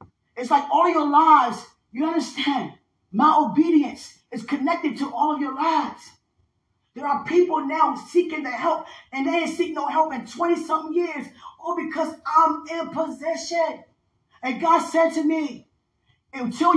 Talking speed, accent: 155 wpm, American